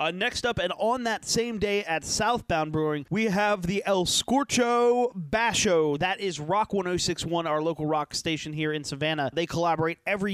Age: 30-49